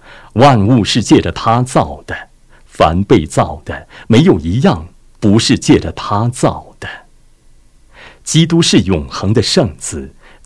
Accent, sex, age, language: native, male, 50-69, Chinese